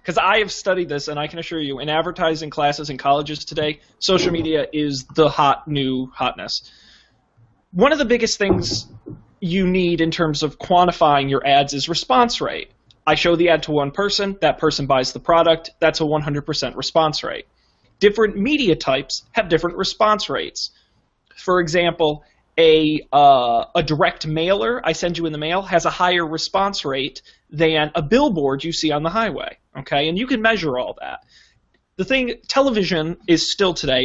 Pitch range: 145-185 Hz